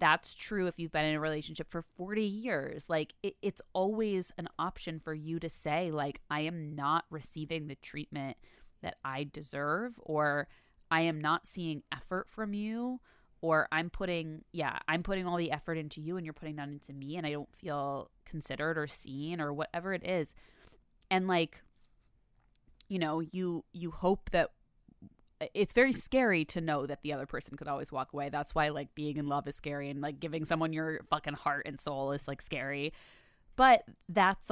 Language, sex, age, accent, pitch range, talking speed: English, female, 20-39, American, 145-180 Hz, 190 wpm